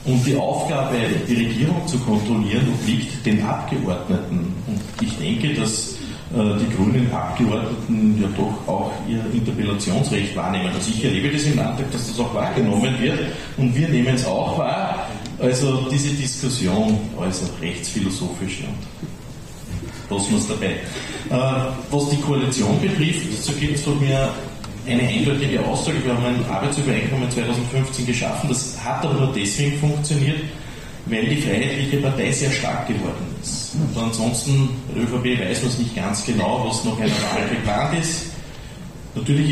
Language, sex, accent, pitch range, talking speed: German, male, Austrian, 115-140 Hz, 150 wpm